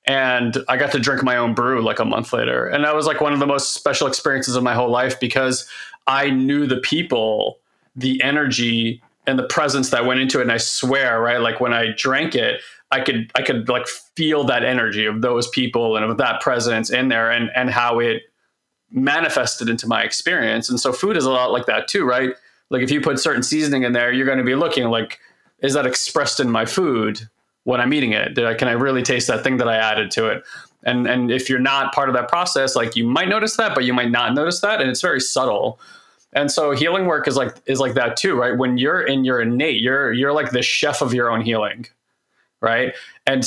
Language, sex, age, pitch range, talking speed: English, male, 30-49, 120-140 Hz, 235 wpm